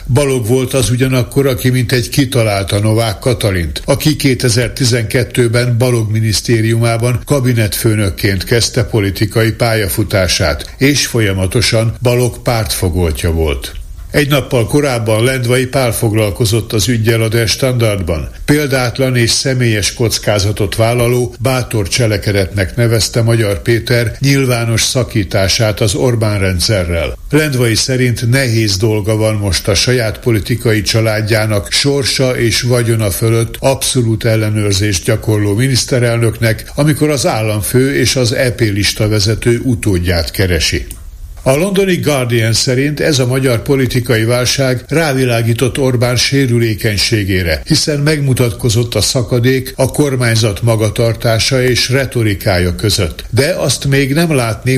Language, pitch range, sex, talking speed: Hungarian, 110-130 Hz, male, 110 wpm